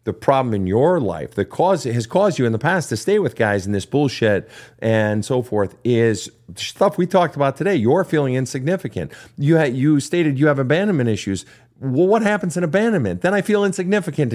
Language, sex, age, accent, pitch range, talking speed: English, male, 50-69, American, 115-160 Hz, 210 wpm